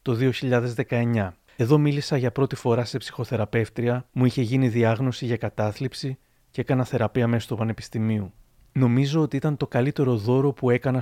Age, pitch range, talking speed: 30-49, 110-135 Hz, 160 wpm